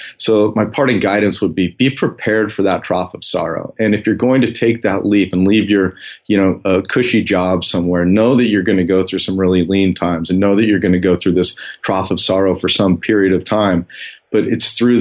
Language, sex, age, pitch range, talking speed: English, male, 30-49, 95-110 Hz, 245 wpm